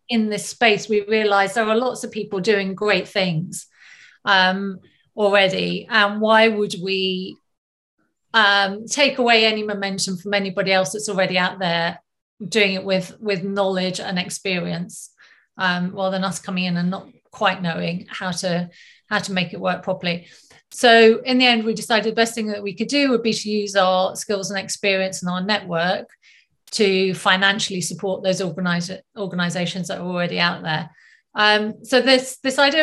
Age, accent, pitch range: 30-49, British, 185-215 Hz